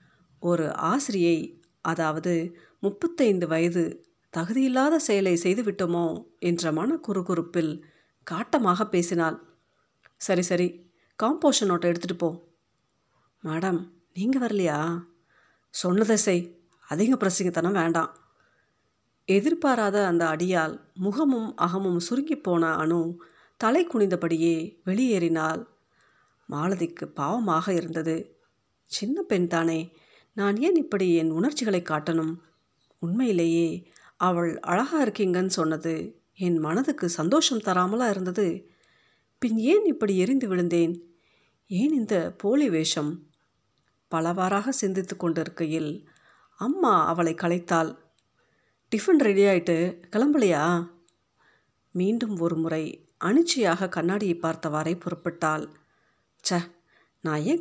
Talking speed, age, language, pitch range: 90 wpm, 50-69, Tamil, 165-205 Hz